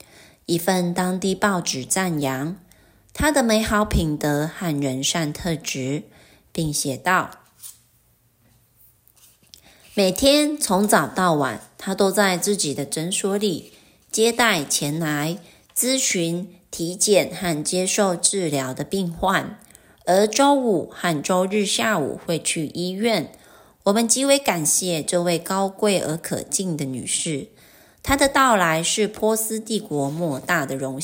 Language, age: Chinese, 30-49